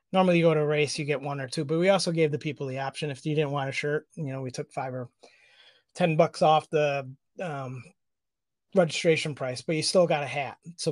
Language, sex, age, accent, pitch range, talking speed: English, male, 30-49, American, 140-160 Hz, 245 wpm